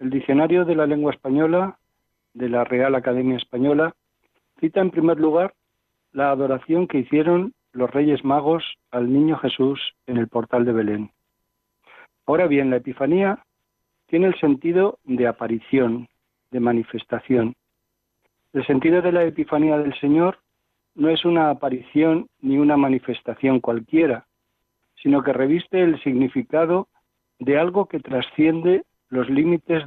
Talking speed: 135 wpm